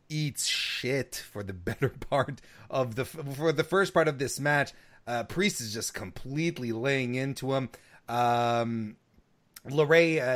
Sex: male